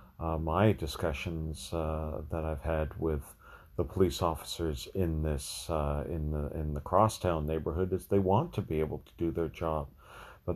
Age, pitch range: 40-59, 75-90 Hz